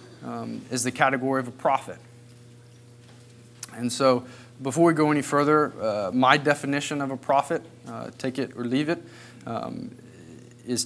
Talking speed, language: 155 wpm, English